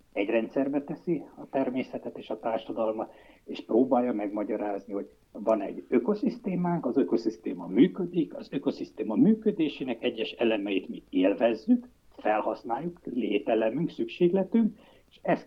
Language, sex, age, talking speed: Hungarian, male, 60-79, 115 wpm